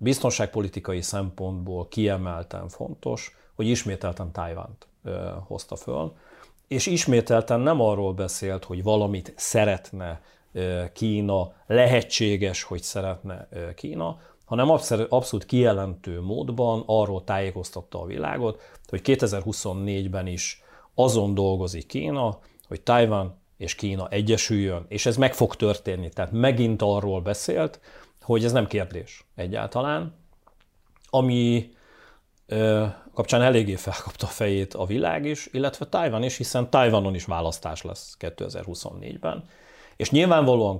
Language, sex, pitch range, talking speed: Hungarian, male, 95-115 Hz, 115 wpm